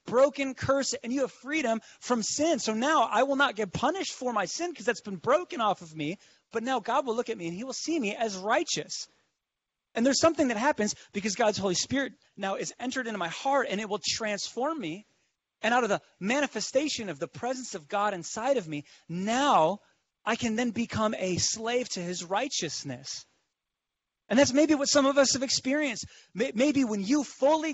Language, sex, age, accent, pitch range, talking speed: English, male, 30-49, American, 210-280 Hz, 205 wpm